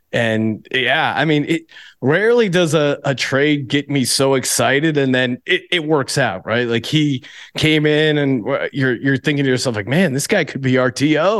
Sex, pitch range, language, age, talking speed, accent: male, 120-150 Hz, English, 30-49, 200 wpm, American